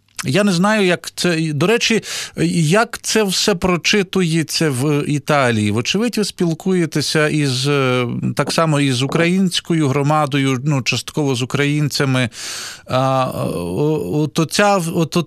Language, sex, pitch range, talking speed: Ukrainian, male, 125-160 Hz, 110 wpm